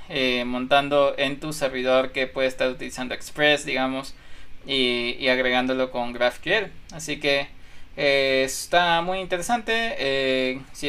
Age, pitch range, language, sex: 20-39, 130-155 Hz, Spanish, male